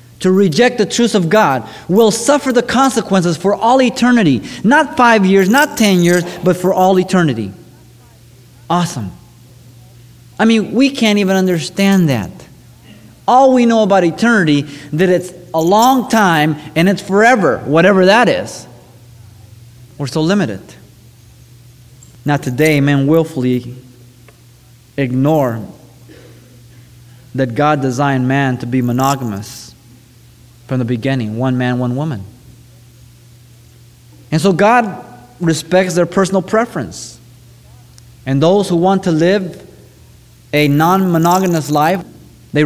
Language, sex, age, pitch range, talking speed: English, male, 30-49, 120-180 Hz, 120 wpm